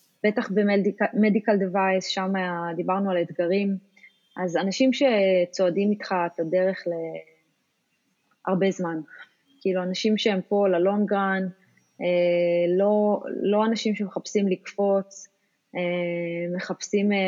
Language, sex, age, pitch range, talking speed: English, female, 20-39, 180-210 Hz, 95 wpm